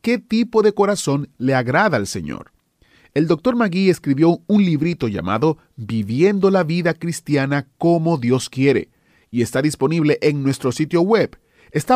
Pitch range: 130-175 Hz